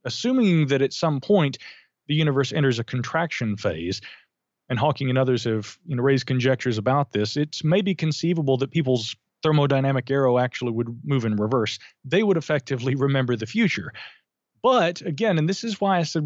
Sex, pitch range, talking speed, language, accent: male, 125-175 Hz, 170 wpm, English, American